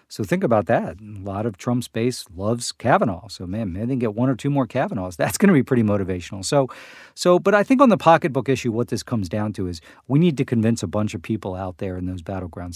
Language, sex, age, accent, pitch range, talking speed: English, male, 40-59, American, 100-135 Hz, 265 wpm